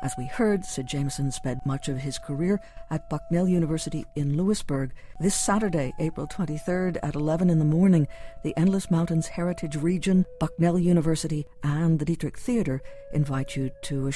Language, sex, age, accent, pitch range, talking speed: English, female, 60-79, American, 145-180 Hz, 165 wpm